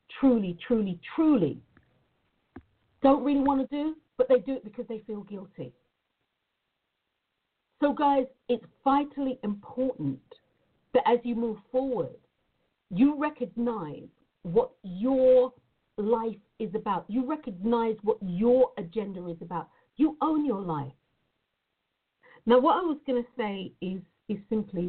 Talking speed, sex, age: 130 wpm, female, 50-69